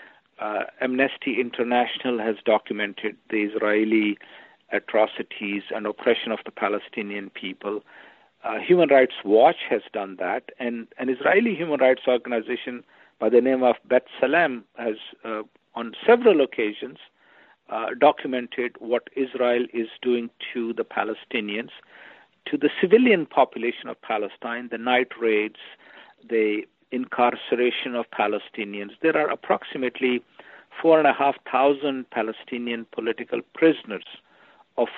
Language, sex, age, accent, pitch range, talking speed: English, male, 50-69, Indian, 115-135 Hz, 115 wpm